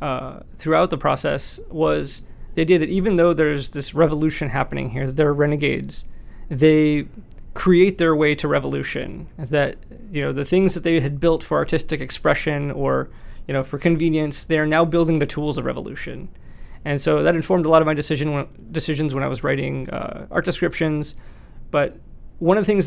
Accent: American